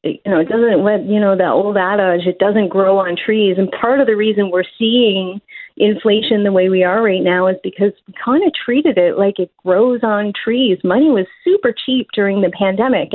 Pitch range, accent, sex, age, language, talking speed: 190-245 Hz, American, female, 30-49, English, 215 wpm